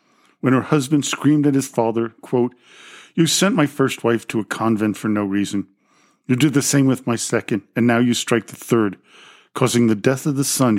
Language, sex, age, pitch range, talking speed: English, male, 50-69, 100-130 Hz, 210 wpm